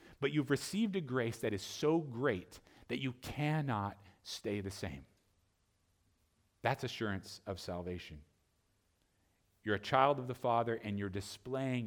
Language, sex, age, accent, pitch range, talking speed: English, male, 40-59, American, 90-125 Hz, 140 wpm